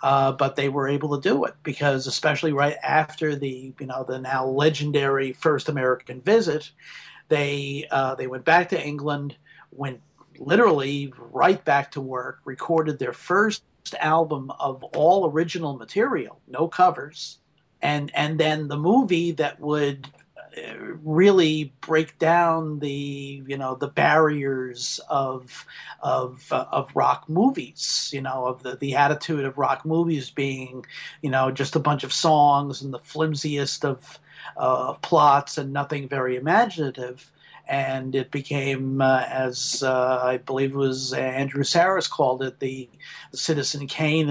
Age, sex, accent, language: 50-69, male, American, English